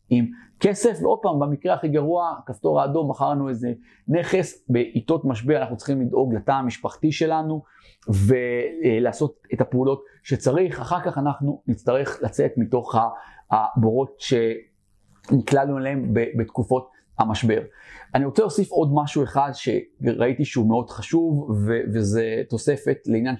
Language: Hebrew